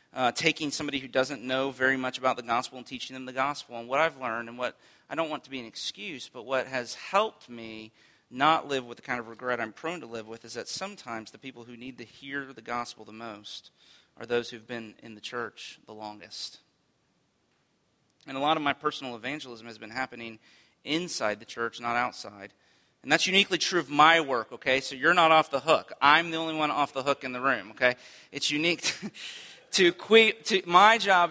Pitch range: 120-160 Hz